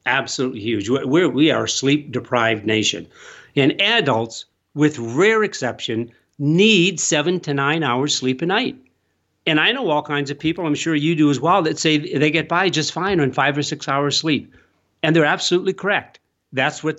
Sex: male